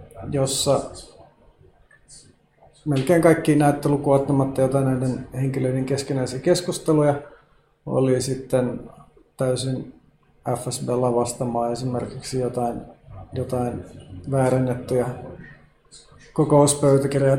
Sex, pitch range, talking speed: male, 130-160 Hz, 70 wpm